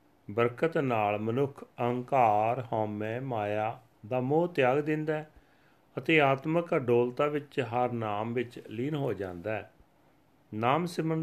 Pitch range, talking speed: 110-140 Hz, 130 wpm